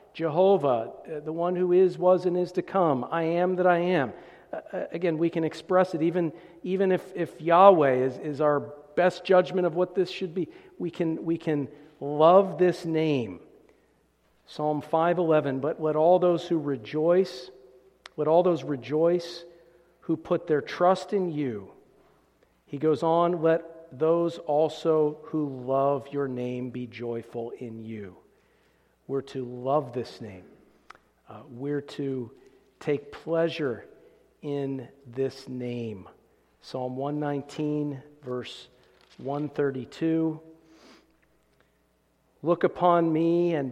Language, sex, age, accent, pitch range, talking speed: English, male, 50-69, American, 145-175 Hz, 130 wpm